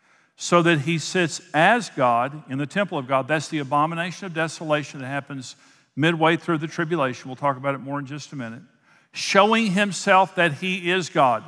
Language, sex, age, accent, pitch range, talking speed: English, male, 50-69, American, 140-170 Hz, 195 wpm